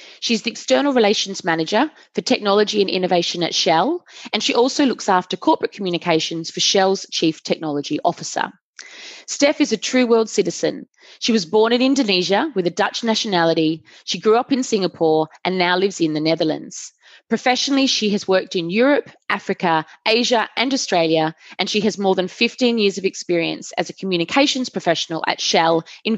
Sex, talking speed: female, 170 wpm